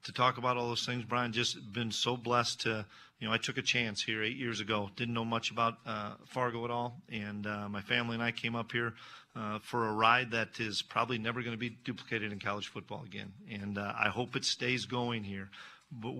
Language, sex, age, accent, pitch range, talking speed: English, male, 40-59, American, 105-120 Hz, 235 wpm